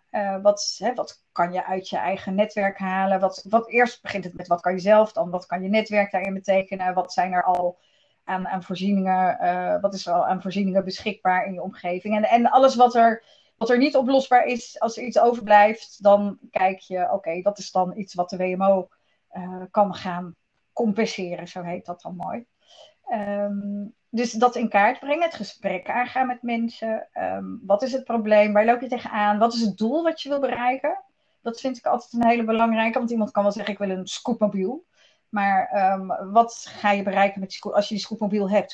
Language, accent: Dutch, Dutch